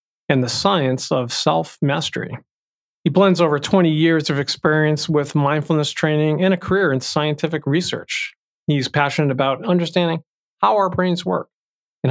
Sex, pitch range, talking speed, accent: male, 140-175 Hz, 150 wpm, American